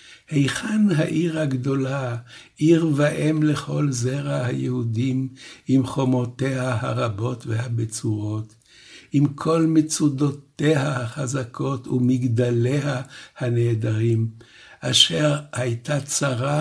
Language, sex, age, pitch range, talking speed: Hebrew, male, 60-79, 120-150 Hz, 75 wpm